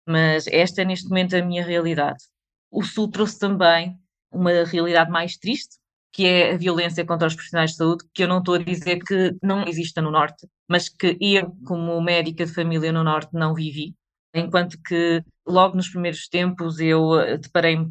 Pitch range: 170-230 Hz